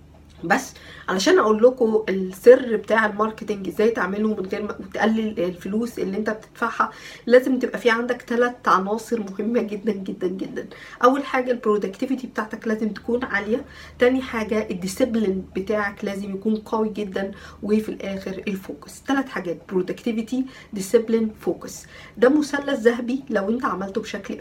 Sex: female